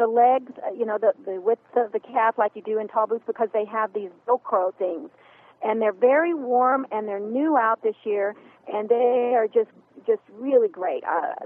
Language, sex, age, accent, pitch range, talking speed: English, female, 50-69, American, 210-265 Hz, 210 wpm